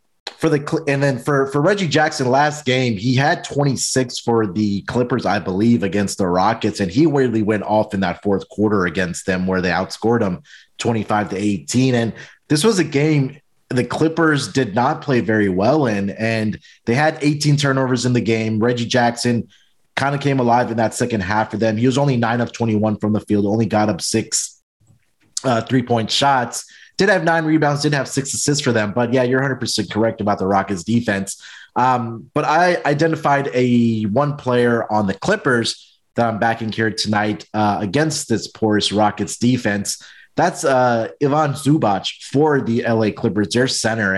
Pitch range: 105-140 Hz